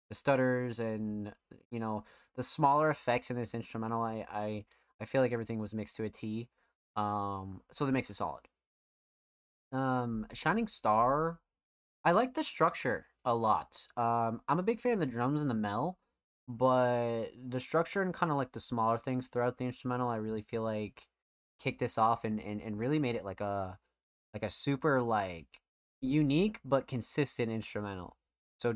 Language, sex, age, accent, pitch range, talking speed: English, male, 20-39, American, 105-130 Hz, 175 wpm